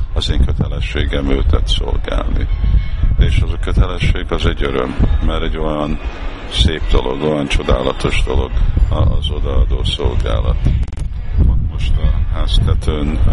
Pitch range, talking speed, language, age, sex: 75-85 Hz, 115 wpm, Hungarian, 50-69, male